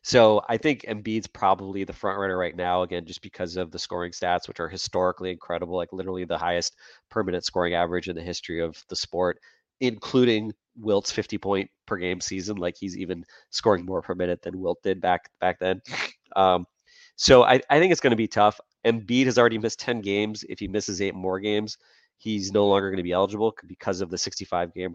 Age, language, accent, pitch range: 30-49, English, American, 90-105 Hz